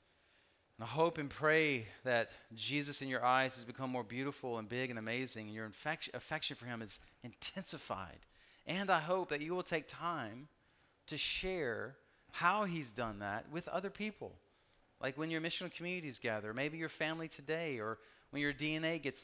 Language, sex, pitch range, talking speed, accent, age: English, male, 130-165 Hz, 180 wpm, American, 40-59